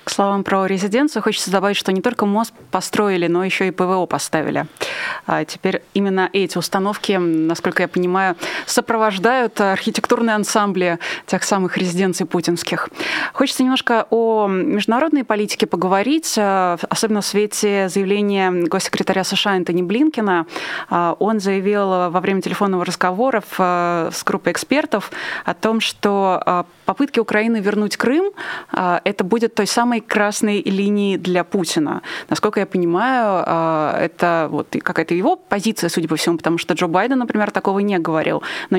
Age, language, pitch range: 20-39, Russian, 180-220 Hz